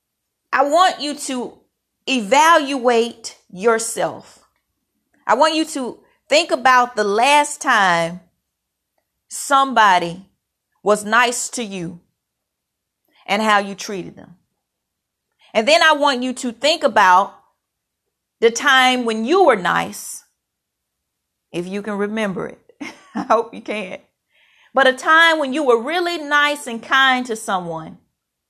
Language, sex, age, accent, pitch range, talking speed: English, female, 40-59, American, 220-285 Hz, 125 wpm